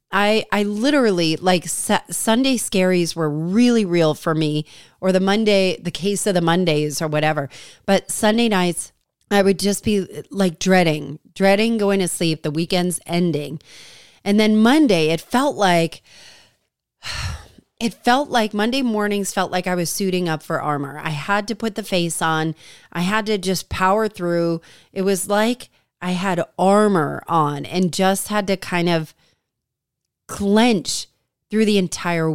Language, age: English, 30-49